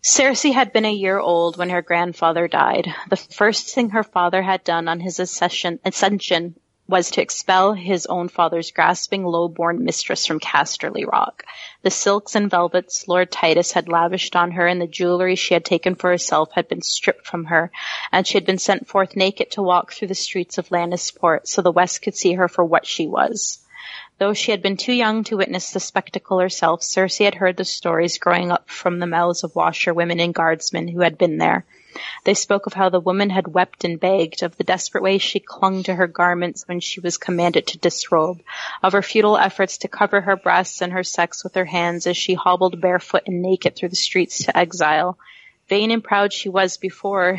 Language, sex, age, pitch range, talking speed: English, female, 30-49, 175-195 Hz, 210 wpm